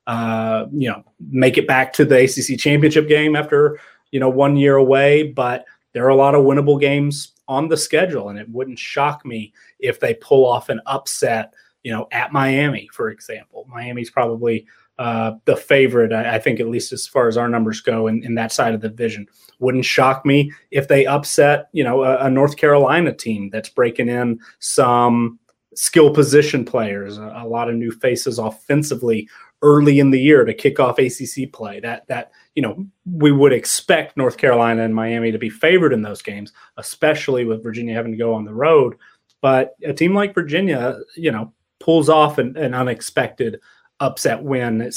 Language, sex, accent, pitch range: English, male, American, 115-145 Hz